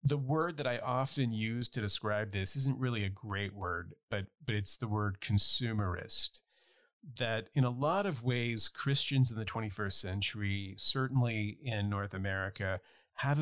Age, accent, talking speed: 40-59, American, 160 wpm